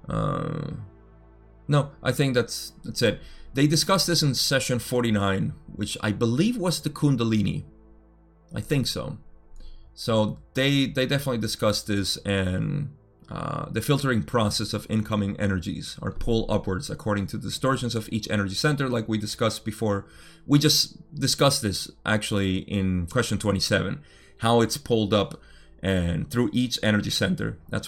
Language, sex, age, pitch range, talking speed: English, male, 30-49, 100-130 Hz, 145 wpm